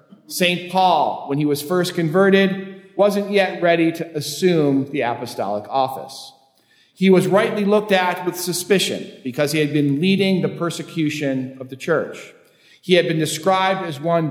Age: 50-69